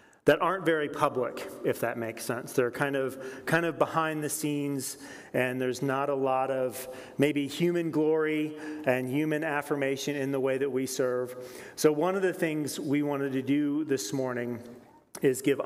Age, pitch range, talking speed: 30-49, 130-150 Hz, 180 wpm